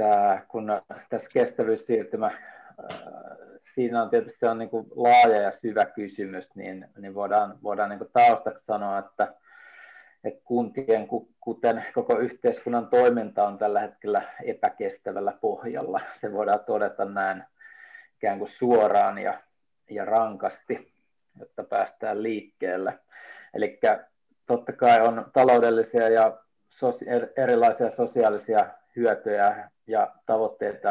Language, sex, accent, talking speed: Finnish, male, native, 110 wpm